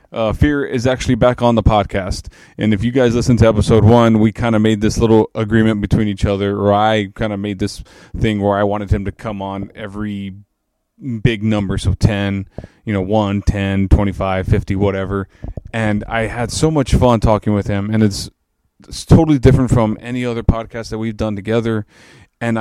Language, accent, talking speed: English, American, 195 wpm